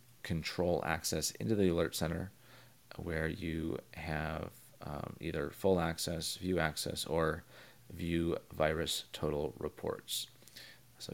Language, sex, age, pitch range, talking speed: English, male, 30-49, 80-105 Hz, 115 wpm